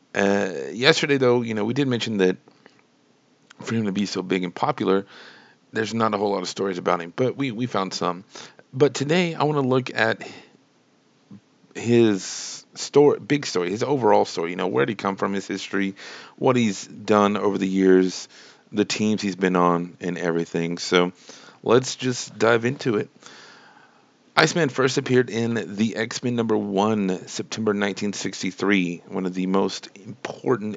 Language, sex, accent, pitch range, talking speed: English, male, American, 95-120 Hz, 175 wpm